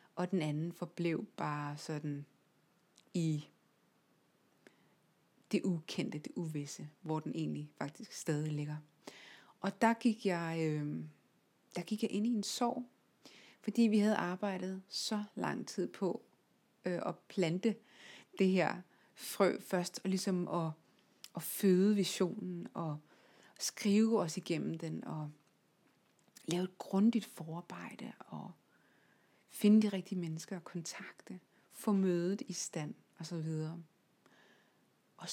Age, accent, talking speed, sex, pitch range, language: 30-49, native, 120 wpm, female, 165-210 Hz, Danish